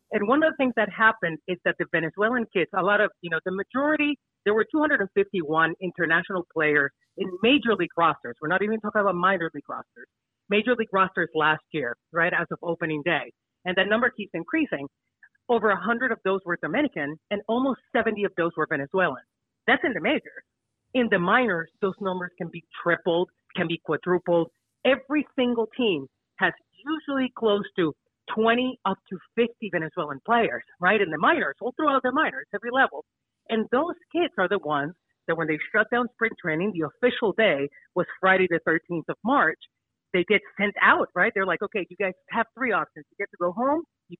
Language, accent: English, American